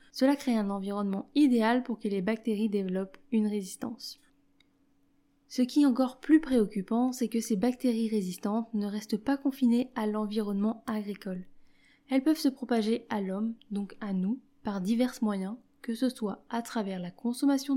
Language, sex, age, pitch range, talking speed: French, female, 20-39, 205-255 Hz, 165 wpm